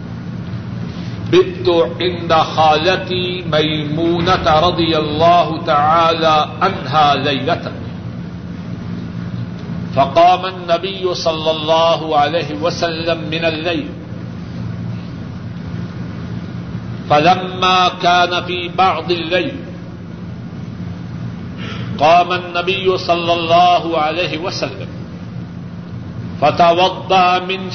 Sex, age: male, 60-79